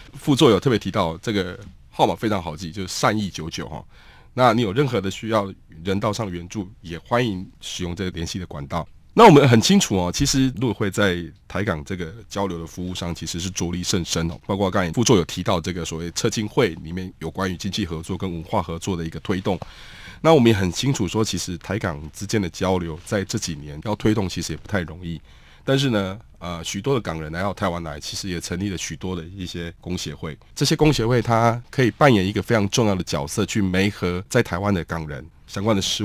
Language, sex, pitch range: Chinese, male, 85-110 Hz